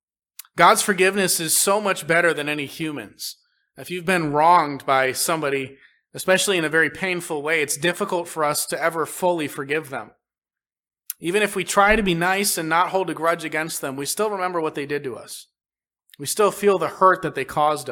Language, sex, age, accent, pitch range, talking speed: English, male, 30-49, American, 145-190 Hz, 200 wpm